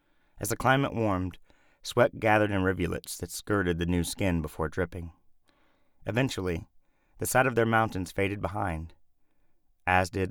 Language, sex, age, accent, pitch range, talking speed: English, male, 30-49, American, 85-105 Hz, 145 wpm